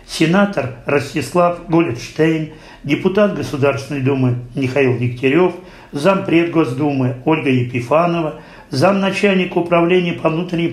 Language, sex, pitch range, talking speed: Russian, male, 140-175 Hz, 90 wpm